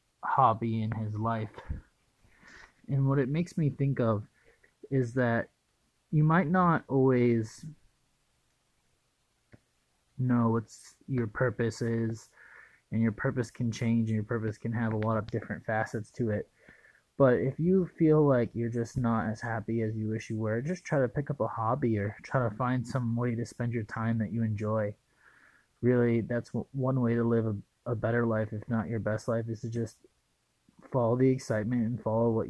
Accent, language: American, English